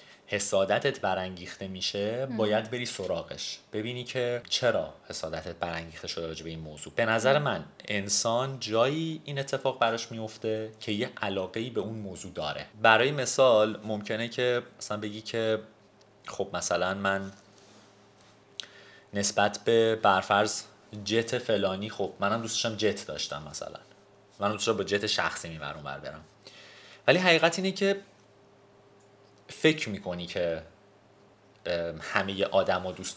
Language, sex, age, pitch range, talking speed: Persian, male, 30-49, 90-115 Hz, 125 wpm